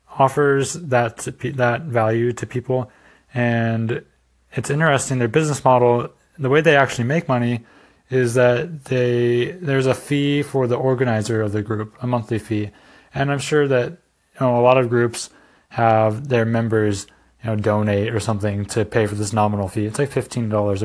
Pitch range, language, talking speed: 110-135 Hz, English, 175 wpm